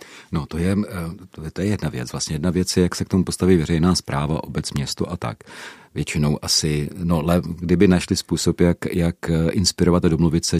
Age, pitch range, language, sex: 40-59, 75-85 Hz, Czech, male